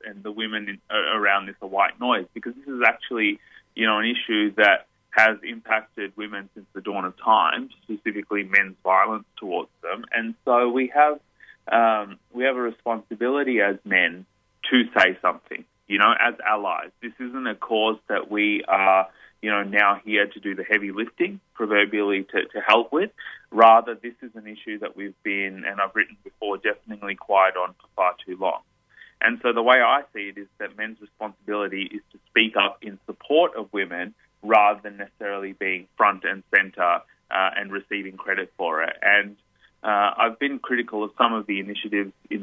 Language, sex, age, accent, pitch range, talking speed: English, male, 20-39, Australian, 100-115 Hz, 185 wpm